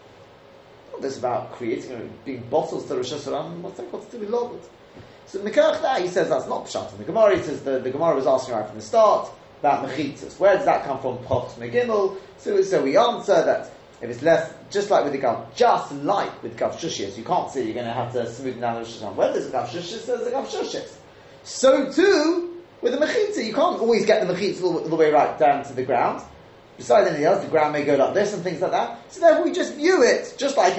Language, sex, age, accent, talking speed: English, male, 30-49, British, 240 wpm